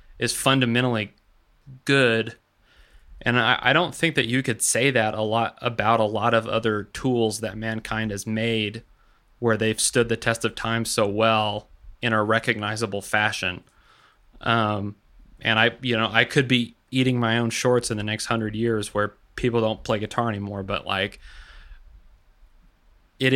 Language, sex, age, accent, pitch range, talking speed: English, male, 20-39, American, 105-120 Hz, 165 wpm